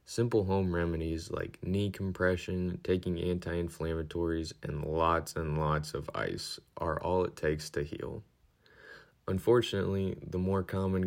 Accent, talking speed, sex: American, 130 wpm, male